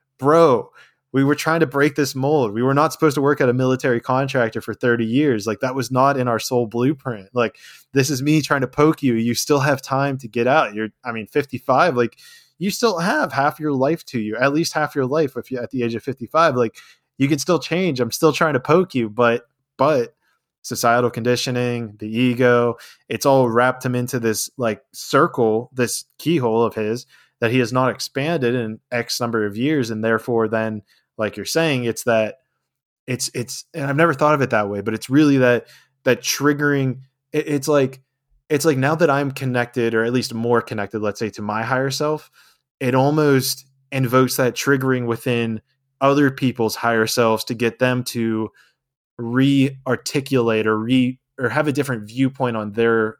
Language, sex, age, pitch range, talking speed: English, male, 20-39, 115-140 Hz, 200 wpm